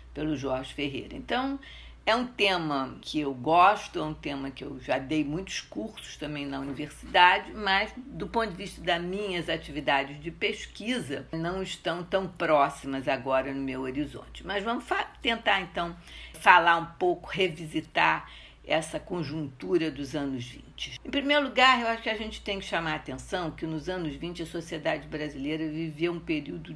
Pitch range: 150-200 Hz